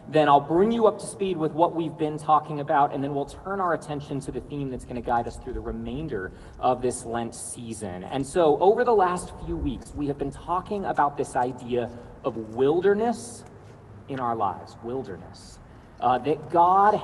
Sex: male